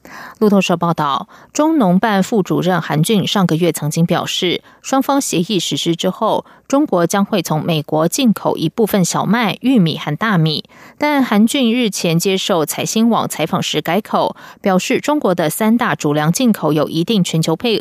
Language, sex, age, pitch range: German, female, 20-39, 160-215 Hz